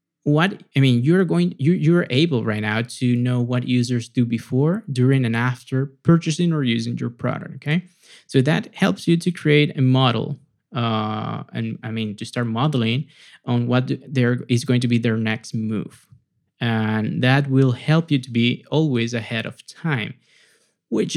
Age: 20-39